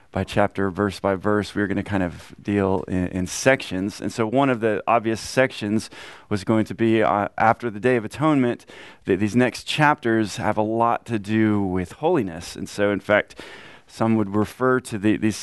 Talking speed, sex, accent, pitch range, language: 205 wpm, male, American, 105-125 Hz, English